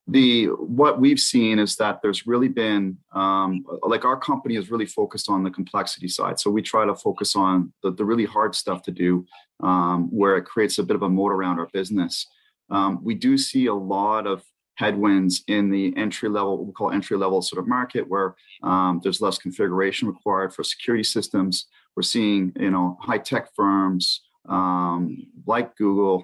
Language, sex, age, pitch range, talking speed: English, male, 30-49, 90-110 Hz, 190 wpm